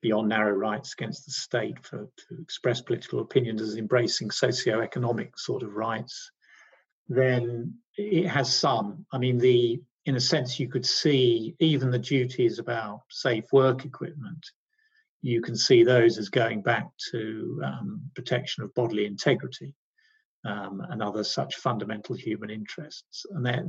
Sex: male